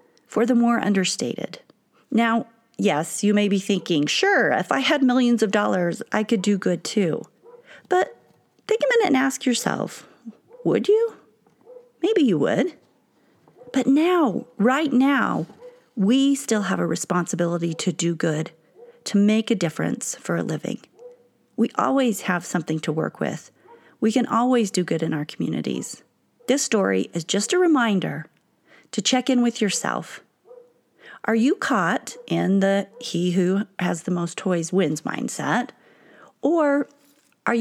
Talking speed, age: 140 wpm, 40-59